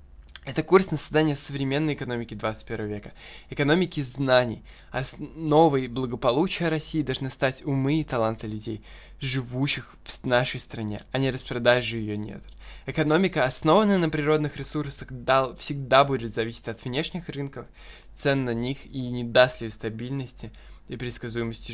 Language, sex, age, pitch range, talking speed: Russian, male, 20-39, 120-145 Hz, 140 wpm